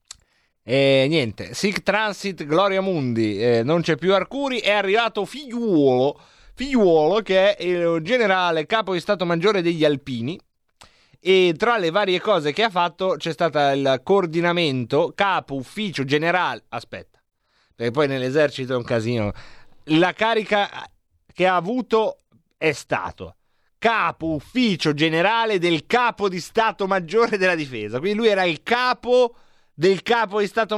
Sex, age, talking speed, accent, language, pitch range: male, 30-49, 145 wpm, native, Italian, 155-210 Hz